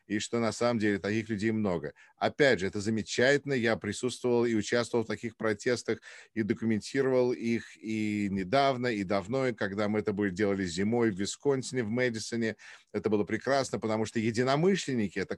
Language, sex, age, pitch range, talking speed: English, male, 50-69, 100-120 Hz, 170 wpm